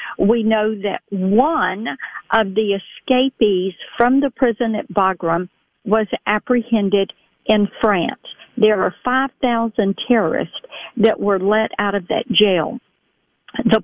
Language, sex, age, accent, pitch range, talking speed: English, female, 50-69, American, 200-235 Hz, 120 wpm